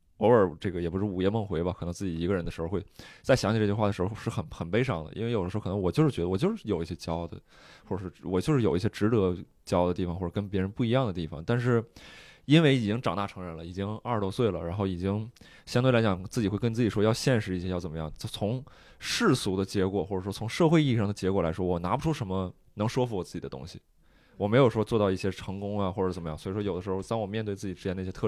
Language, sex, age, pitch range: Chinese, male, 20-39, 90-115 Hz